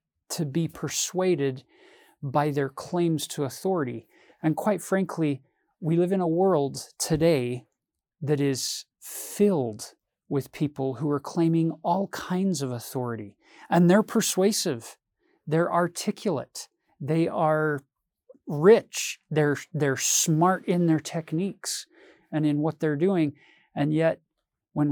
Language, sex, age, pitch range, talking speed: English, male, 40-59, 140-175 Hz, 125 wpm